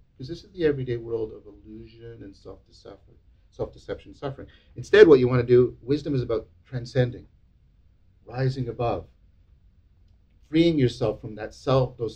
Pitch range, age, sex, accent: 105-140 Hz, 50-69, male, American